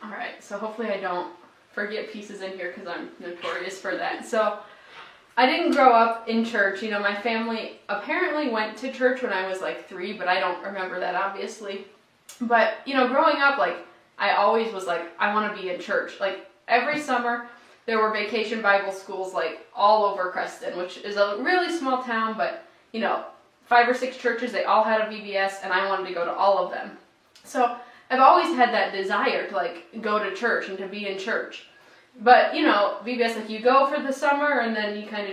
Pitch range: 195-255 Hz